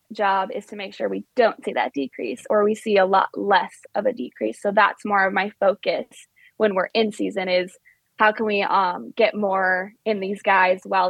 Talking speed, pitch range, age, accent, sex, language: 215 wpm, 195-225 Hz, 20-39, American, female, English